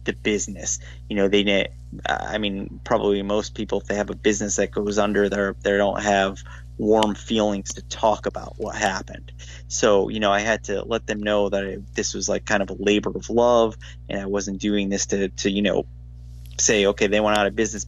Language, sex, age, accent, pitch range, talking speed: English, male, 20-39, American, 65-105 Hz, 220 wpm